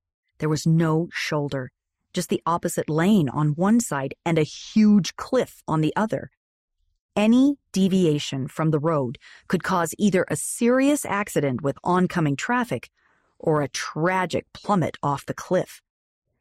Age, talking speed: 40-59, 145 wpm